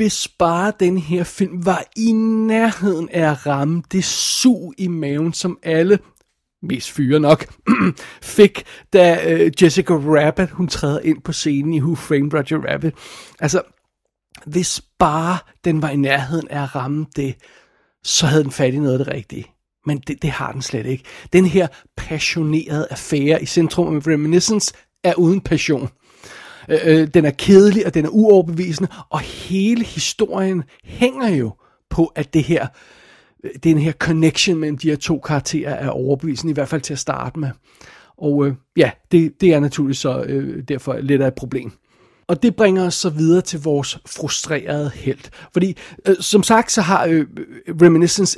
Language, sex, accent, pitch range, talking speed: Danish, male, native, 145-180 Hz, 170 wpm